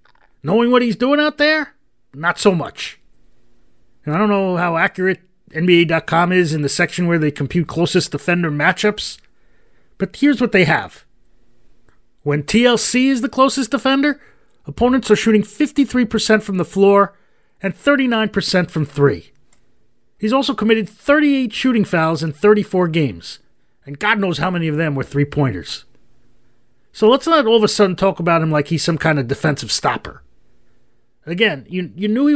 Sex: male